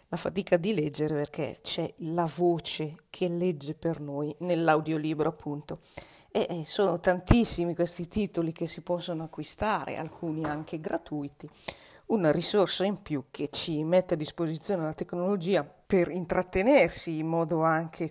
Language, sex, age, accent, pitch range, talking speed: Italian, female, 40-59, native, 155-185 Hz, 140 wpm